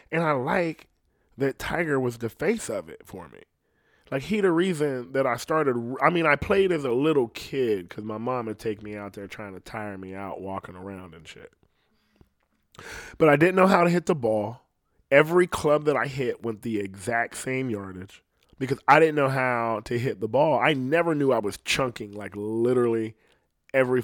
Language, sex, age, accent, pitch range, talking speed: English, male, 20-39, American, 100-135 Hz, 200 wpm